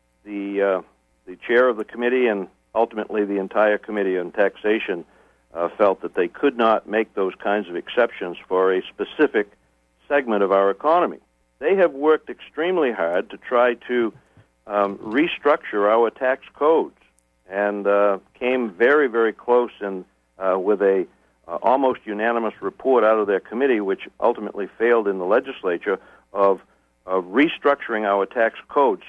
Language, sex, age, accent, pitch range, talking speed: English, male, 60-79, American, 95-120 Hz, 155 wpm